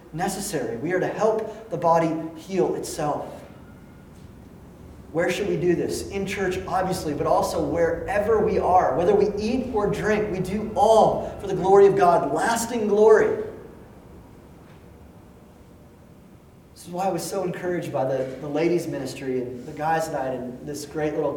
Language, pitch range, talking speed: English, 140-190 Hz, 160 wpm